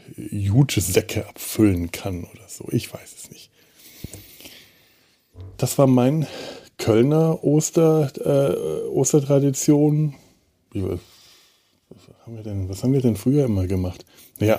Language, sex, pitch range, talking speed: German, male, 100-125 Hz, 125 wpm